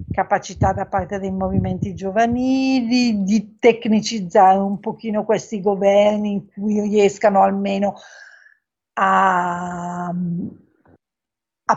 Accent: native